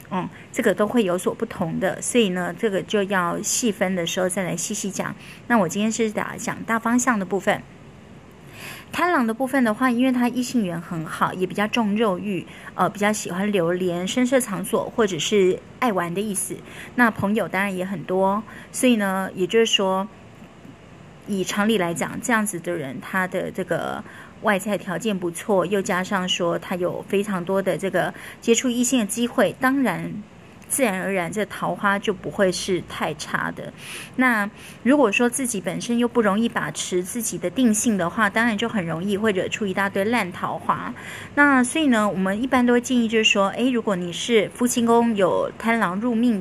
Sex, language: female, Chinese